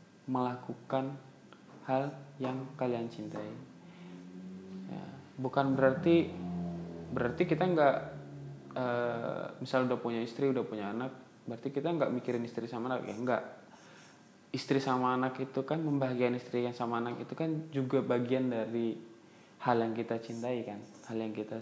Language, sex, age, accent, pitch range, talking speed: Indonesian, male, 20-39, native, 115-150 Hz, 140 wpm